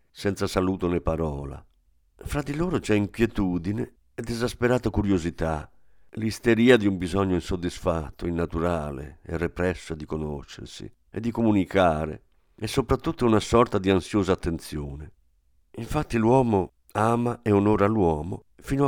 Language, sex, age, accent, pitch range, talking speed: Italian, male, 50-69, native, 85-115 Hz, 125 wpm